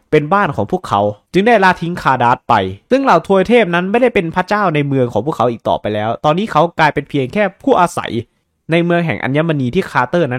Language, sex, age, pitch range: Thai, male, 20-39, 135-210 Hz